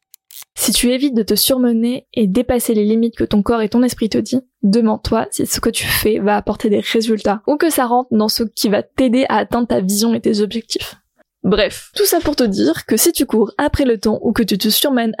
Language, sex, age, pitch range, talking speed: French, female, 20-39, 220-260 Hz, 245 wpm